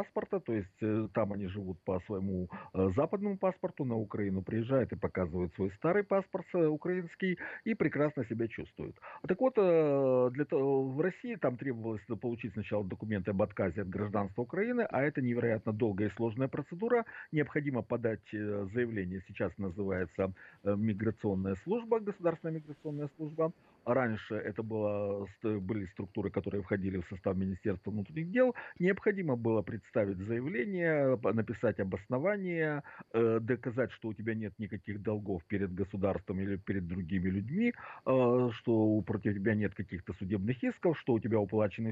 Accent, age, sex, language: native, 50-69, male, Russian